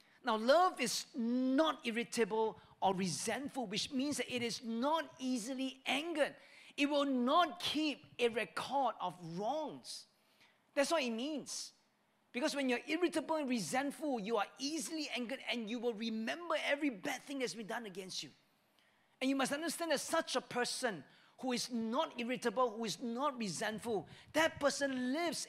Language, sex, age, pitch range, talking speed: English, male, 40-59, 210-285 Hz, 160 wpm